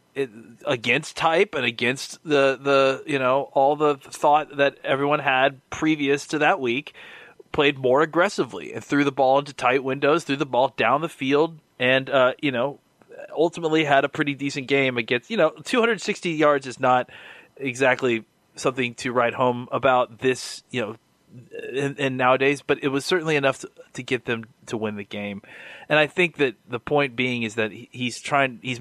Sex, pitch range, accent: male, 115-140 Hz, American